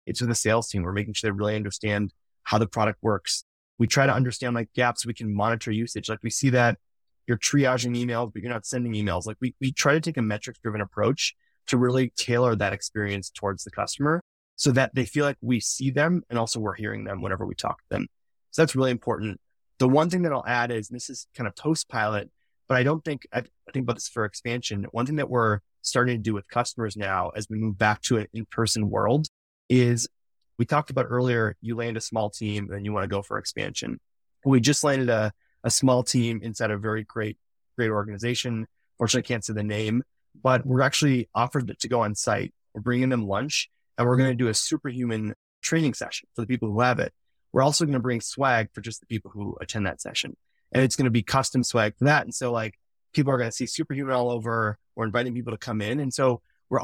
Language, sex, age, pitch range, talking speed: English, male, 20-39, 105-130 Hz, 240 wpm